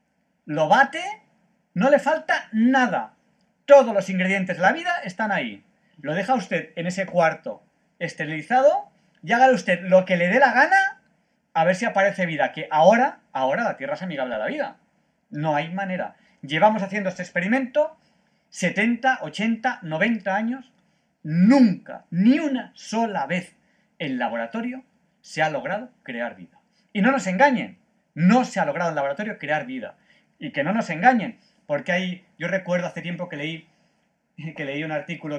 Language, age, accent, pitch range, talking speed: Spanish, 40-59, Spanish, 180-240 Hz, 165 wpm